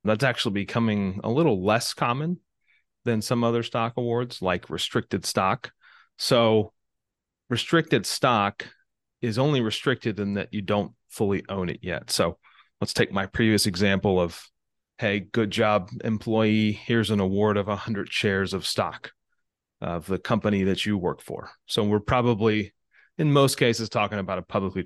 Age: 30-49